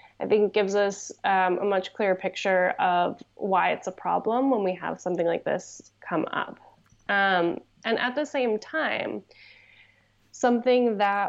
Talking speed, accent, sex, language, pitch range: 165 wpm, American, female, English, 185-215 Hz